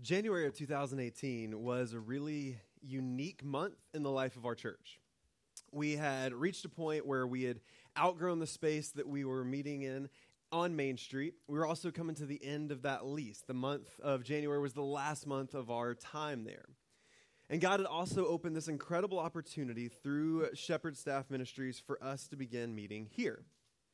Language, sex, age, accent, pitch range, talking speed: English, male, 20-39, American, 130-165 Hz, 185 wpm